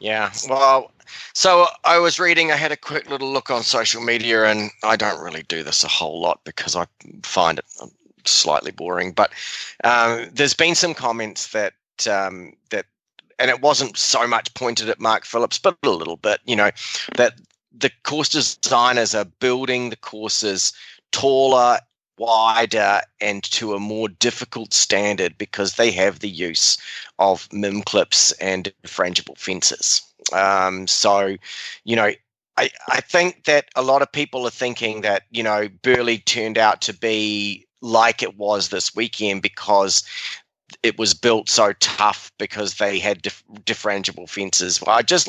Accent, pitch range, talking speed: Australian, 105-130 Hz, 165 wpm